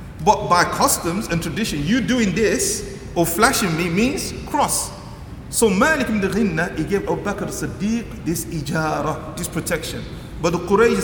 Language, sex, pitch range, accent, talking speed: English, male, 170-230 Hz, Nigerian, 160 wpm